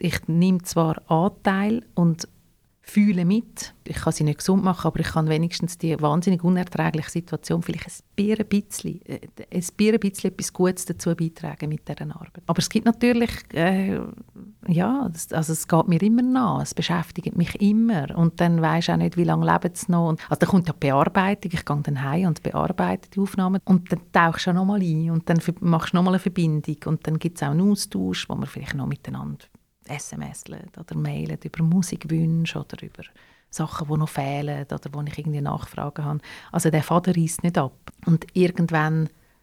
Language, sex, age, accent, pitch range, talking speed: German, female, 40-59, Austrian, 155-185 Hz, 190 wpm